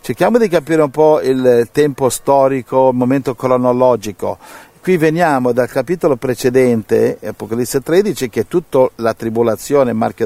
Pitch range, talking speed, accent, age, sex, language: 115-145 Hz, 140 wpm, native, 50-69, male, Italian